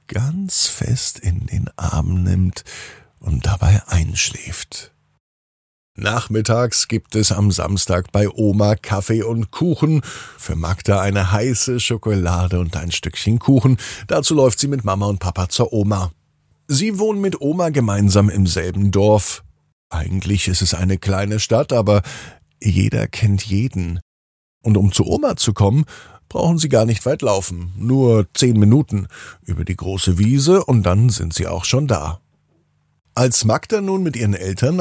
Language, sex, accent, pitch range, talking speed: German, male, German, 90-130 Hz, 150 wpm